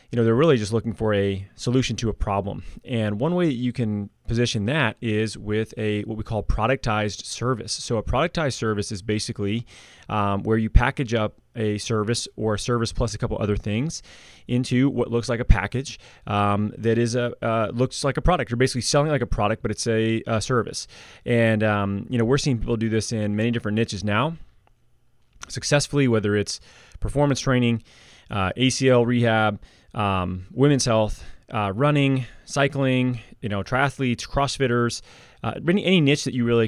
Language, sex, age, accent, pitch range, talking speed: English, male, 20-39, American, 105-130 Hz, 185 wpm